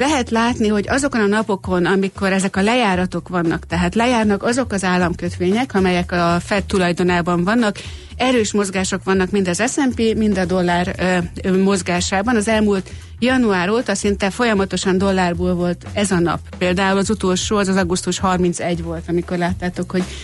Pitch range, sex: 180-225 Hz, female